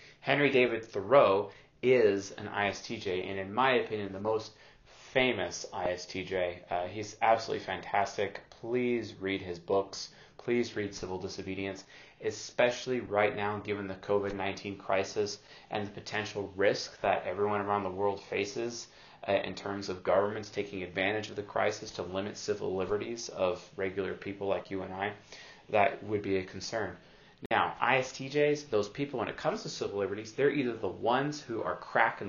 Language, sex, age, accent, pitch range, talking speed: English, male, 30-49, American, 95-115 Hz, 160 wpm